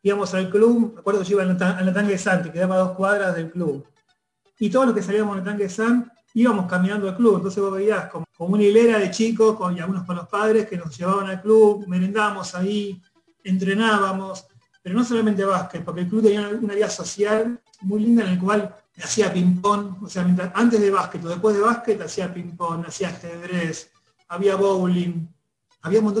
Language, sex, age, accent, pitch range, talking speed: Spanish, male, 30-49, Argentinian, 180-215 Hz, 210 wpm